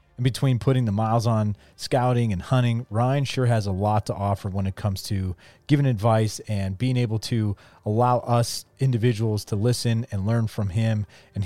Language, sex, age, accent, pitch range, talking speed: English, male, 30-49, American, 100-125 Hz, 190 wpm